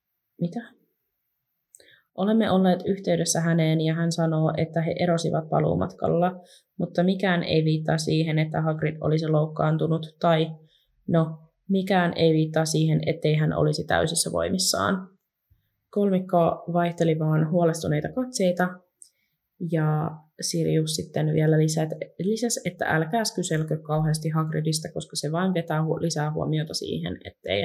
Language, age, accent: Finnish, 20-39, native